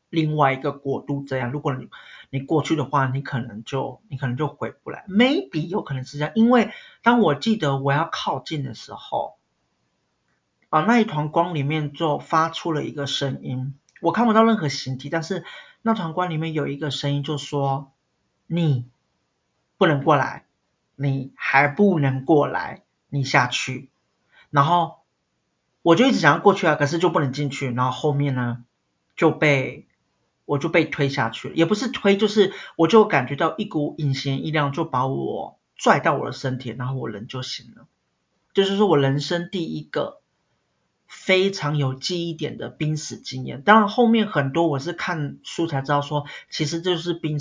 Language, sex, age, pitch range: Chinese, male, 50-69, 135-170 Hz